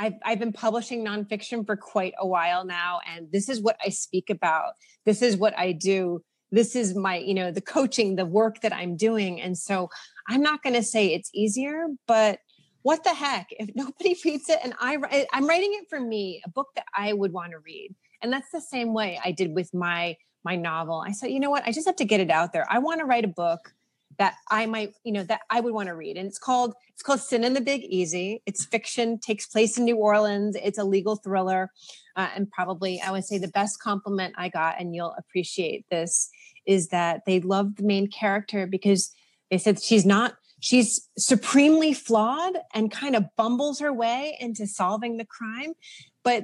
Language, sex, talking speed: English, female, 220 wpm